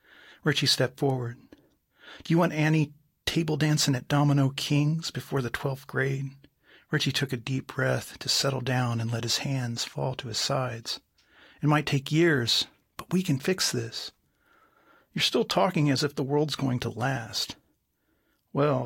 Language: English